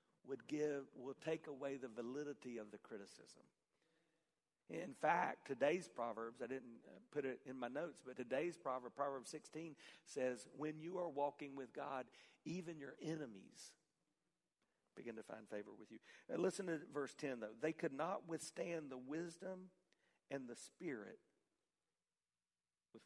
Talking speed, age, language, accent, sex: 150 wpm, 50-69, English, American, male